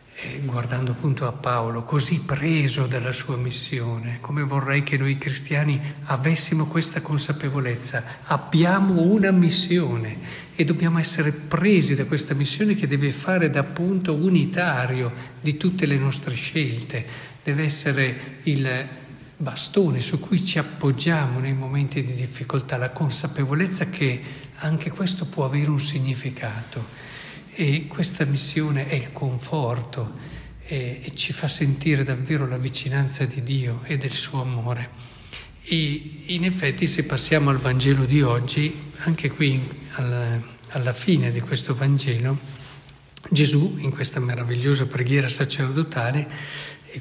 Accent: native